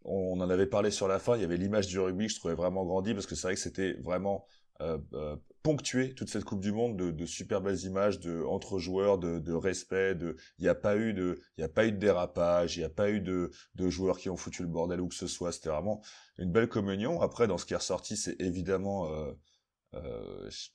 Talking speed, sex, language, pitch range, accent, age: 245 wpm, male, French, 85-100 Hz, French, 30-49